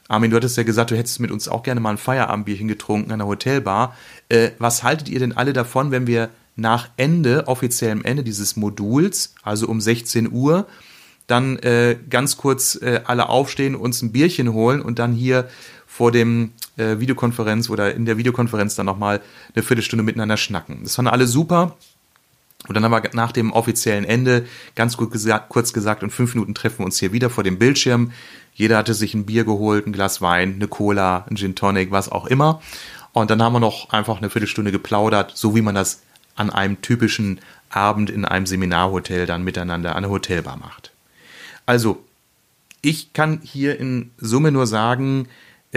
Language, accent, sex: German, German, male